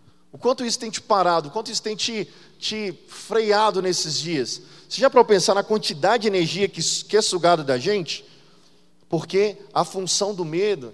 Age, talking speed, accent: 20-39, 180 wpm, Brazilian